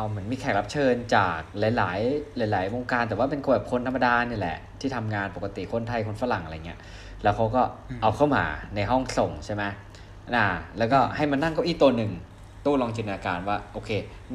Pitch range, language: 100-120 Hz, Thai